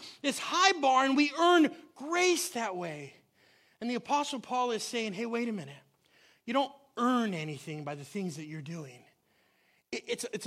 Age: 30-49